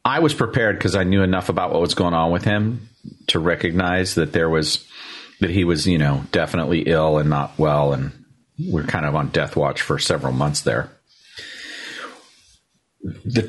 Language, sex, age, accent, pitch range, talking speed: English, male, 40-59, American, 85-110 Hz, 180 wpm